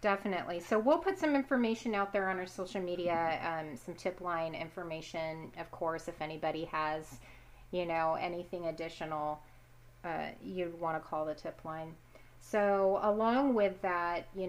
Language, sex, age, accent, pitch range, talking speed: English, female, 30-49, American, 165-190 Hz, 160 wpm